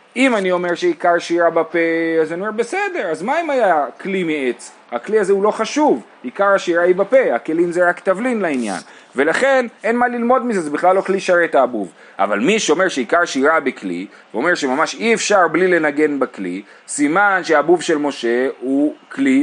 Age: 30-49